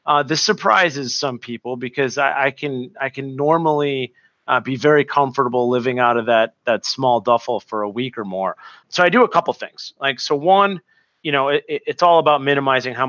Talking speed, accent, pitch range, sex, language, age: 210 wpm, American, 125-170 Hz, male, English, 30-49